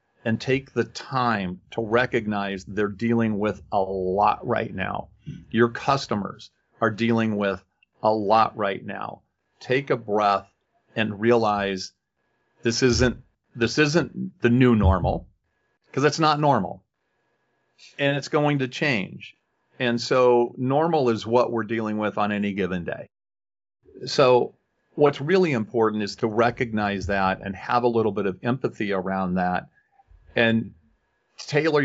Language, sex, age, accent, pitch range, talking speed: English, male, 40-59, American, 100-120 Hz, 140 wpm